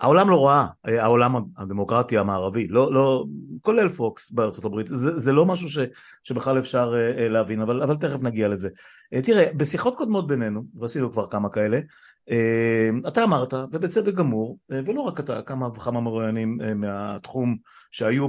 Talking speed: 150 wpm